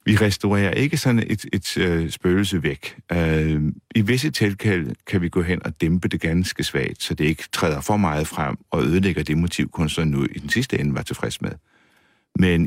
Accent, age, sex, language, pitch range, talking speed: native, 60-79, male, Danish, 80-100 Hz, 205 wpm